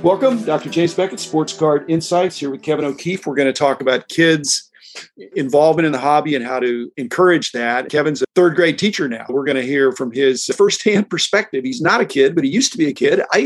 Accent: American